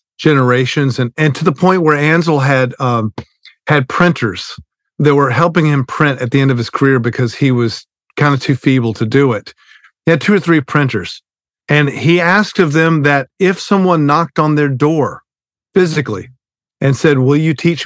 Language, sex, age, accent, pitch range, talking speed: English, male, 50-69, American, 135-165 Hz, 190 wpm